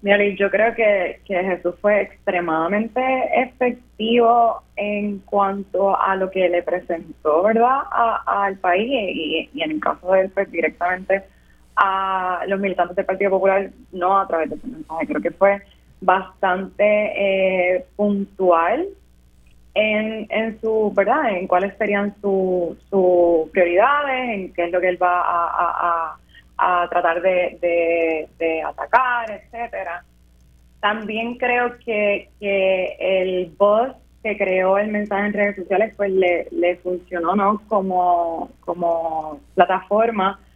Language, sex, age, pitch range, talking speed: Spanish, female, 20-39, 175-215 Hz, 140 wpm